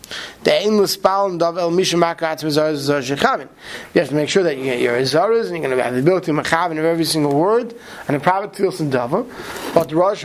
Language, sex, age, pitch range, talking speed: English, male, 30-49, 150-205 Hz, 220 wpm